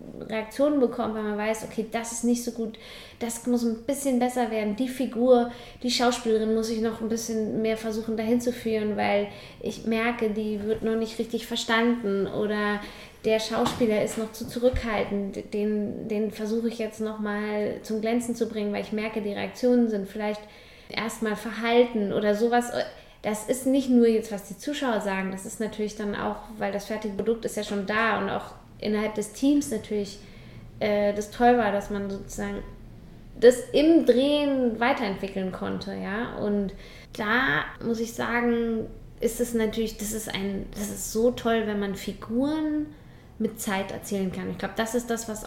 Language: German